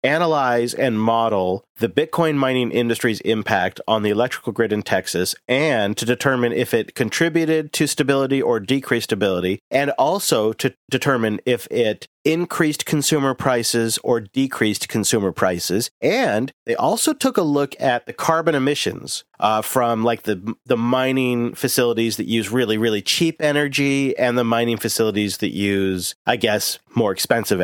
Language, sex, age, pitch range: English, male, 40-59, 115-140 Hz